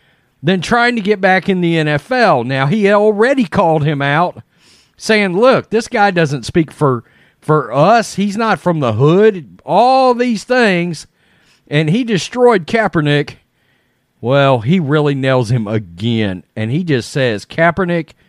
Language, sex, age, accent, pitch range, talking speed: English, male, 40-59, American, 140-190 Hz, 150 wpm